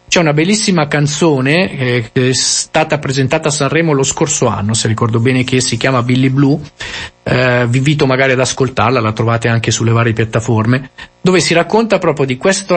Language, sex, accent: Italian, male, native